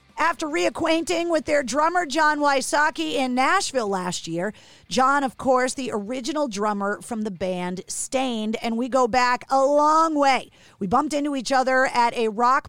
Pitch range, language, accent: 235-300 Hz, English, American